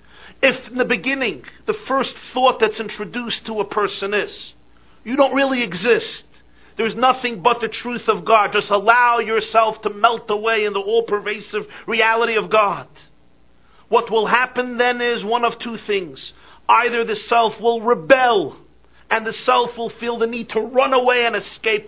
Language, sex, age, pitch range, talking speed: English, male, 50-69, 150-225 Hz, 170 wpm